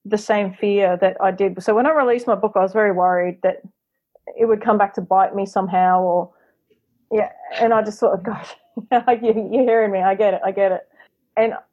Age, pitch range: 30-49, 190-220 Hz